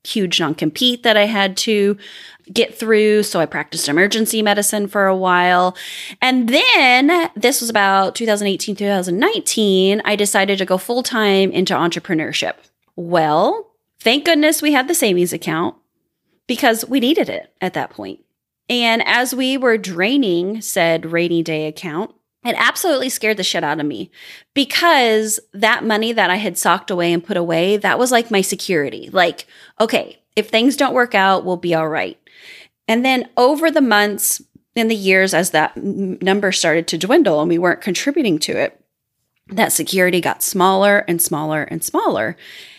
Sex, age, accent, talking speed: female, 20-39, American, 165 wpm